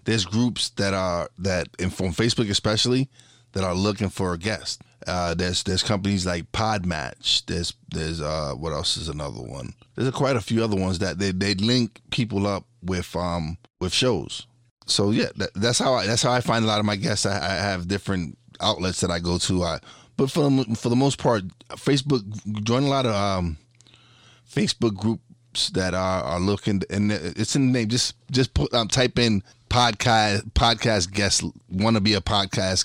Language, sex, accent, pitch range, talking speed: English, male, American, 95-120 Hz, 195 wpm